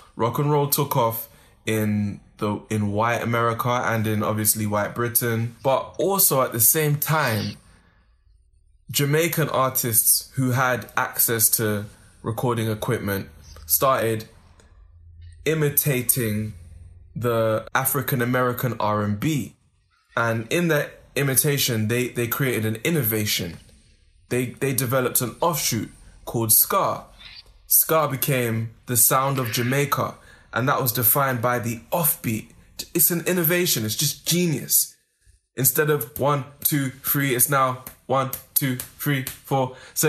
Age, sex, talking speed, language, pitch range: 20-39, male, 120 wpm, English, 110-140 Hz